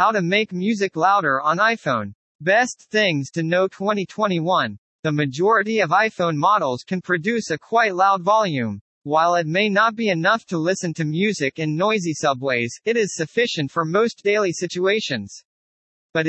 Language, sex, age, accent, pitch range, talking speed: English, male, 40-59, American, 155-210 Hz, 160 wpm